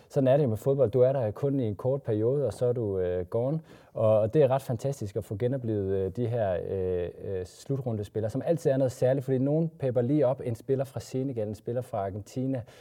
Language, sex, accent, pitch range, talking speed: Danish, male, native, 105-135 Hz, 240 wpm